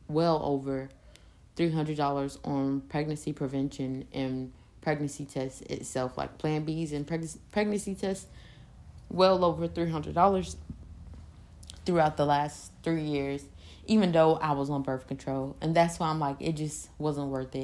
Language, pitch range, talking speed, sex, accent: English, 135-165 Hz, 140 wpm, female, American